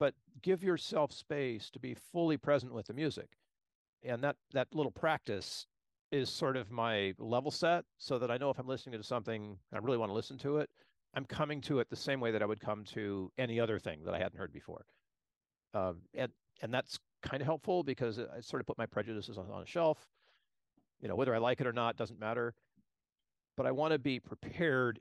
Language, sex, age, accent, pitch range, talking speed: English, male, 50-69, American, 105-140 Hz, 225 wpm